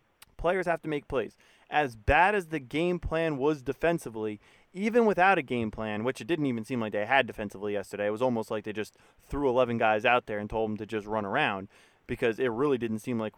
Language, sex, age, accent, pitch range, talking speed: English, male, 30-49, American, 125-175 Hz, 235 wpm